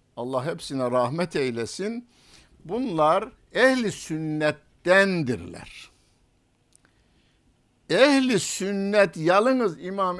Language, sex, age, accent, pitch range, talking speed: Turkish, male, 60-79, native, 135-190 Hz, 65 wpm